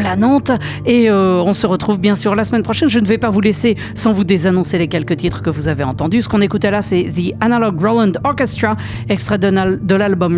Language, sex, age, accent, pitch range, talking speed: English, female, 40-59, French, 180-230 Hz, 245 wpm